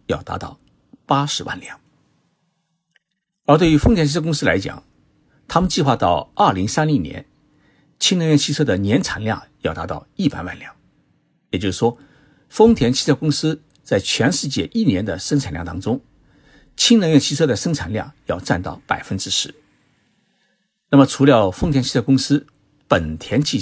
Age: 50-69